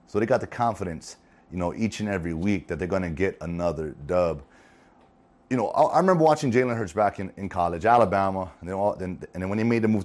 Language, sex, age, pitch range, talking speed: English, male, 30-49, 85-115 Hz, 250 wpm